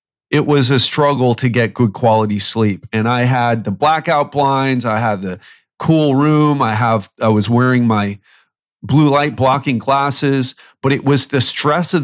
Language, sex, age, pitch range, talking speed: English, male, 30-49, 120-150 Hz, 180 wpm